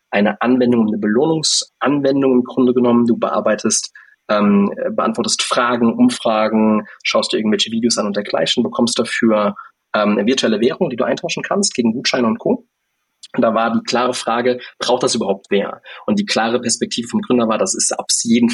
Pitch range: 115-160 Hz